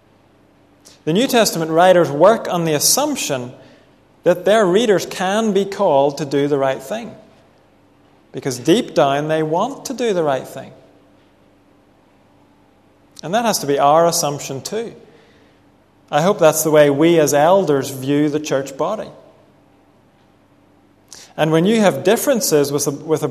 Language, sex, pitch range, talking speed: English, male, 135-175 Hz, 145 wpm